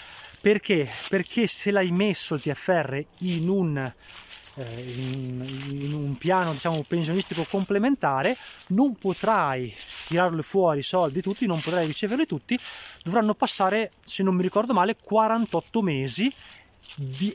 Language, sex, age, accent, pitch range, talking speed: Italian, male, 20-39, native, 140-195 Hz, 130 wpm